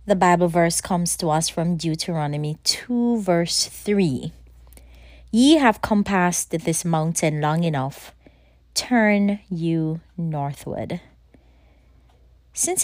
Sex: female